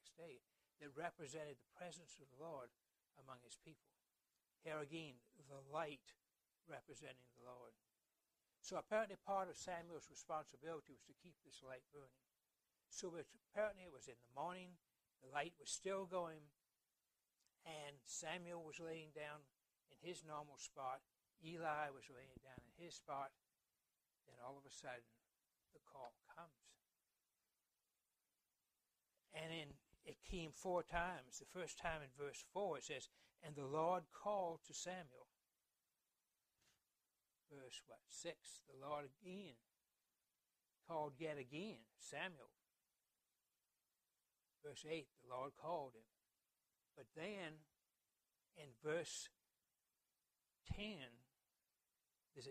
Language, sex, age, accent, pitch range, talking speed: English, male, 60-79, American, 135-170 Hz, 125 wpm